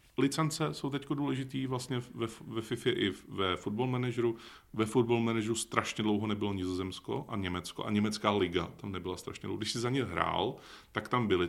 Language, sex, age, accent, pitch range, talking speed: Czech, male, 30-49, native, 95-115 Hz, 185 wpm